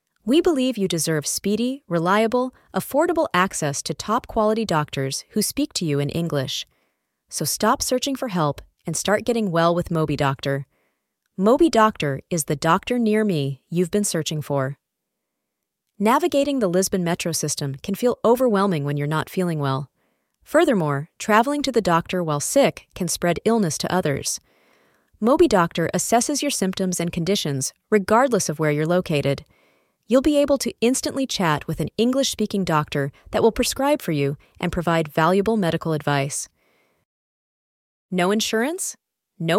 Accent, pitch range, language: American, 160-235 Hz, English